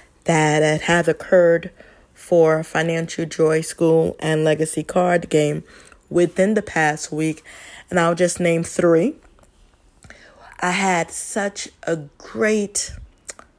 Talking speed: 115 wpm